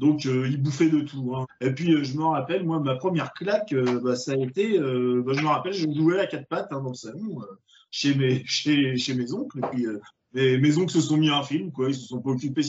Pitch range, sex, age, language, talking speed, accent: 125-155 Hz, male, 20-39, French, 285 wpm, French